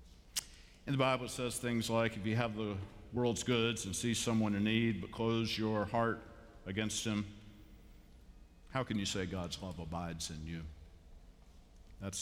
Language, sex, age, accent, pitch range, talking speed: English, male, 50-69, American, 90-115 Hz, 155 wpm